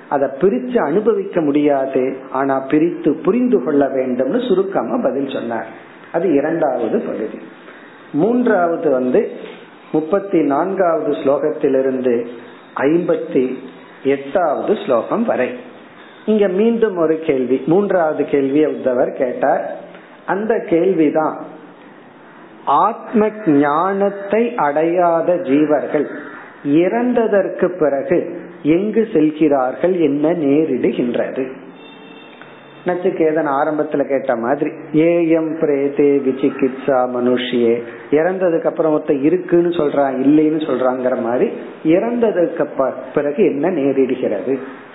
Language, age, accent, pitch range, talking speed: Tamil, 50-69, native, 140-190 Hz, 70 wpm